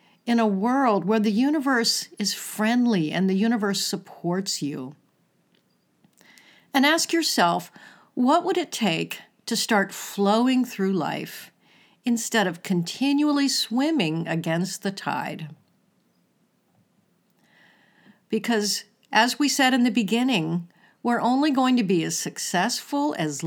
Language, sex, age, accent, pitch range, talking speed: English, female, 50-69, American, 180-255 Hz, 120 wpm